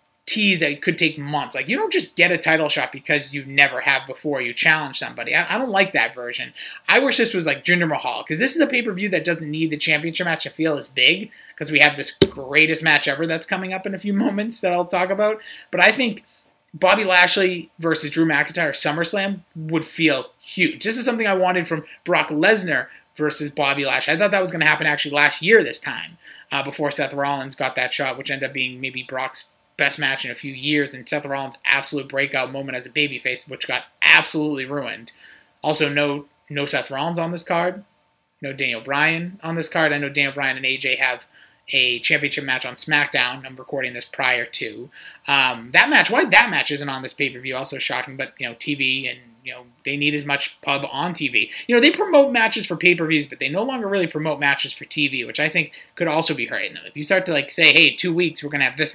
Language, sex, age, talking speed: English, male, 30-49, 235 wpm